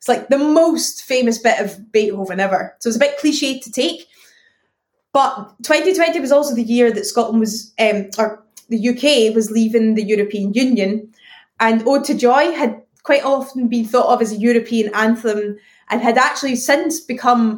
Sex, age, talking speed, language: female, 20-39, 180 wpm, English